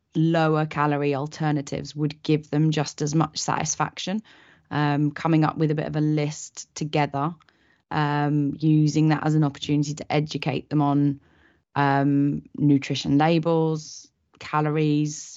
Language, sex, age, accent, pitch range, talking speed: English, female, 20-39, British, 145-160 Hz, 135 wpm